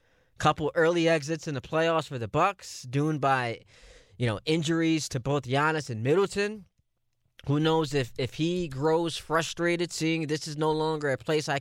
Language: English